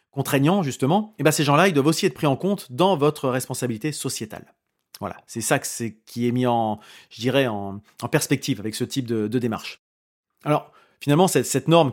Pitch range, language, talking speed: 120-165 Hz, French, 200 wpm